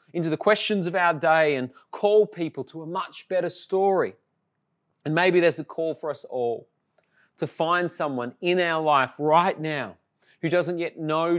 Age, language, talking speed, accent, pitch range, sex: 30-49, English, 180 wpm, Australian, 140-175 Hz, male